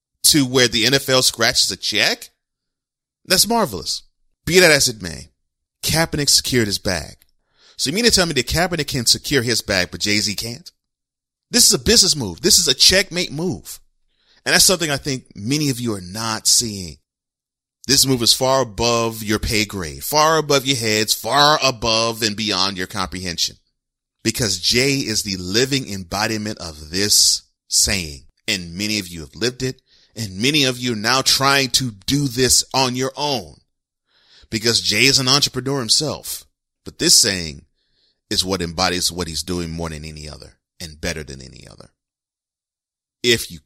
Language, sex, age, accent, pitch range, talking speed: English, male, 30-49, American, 90-130 Hz, 175 wpm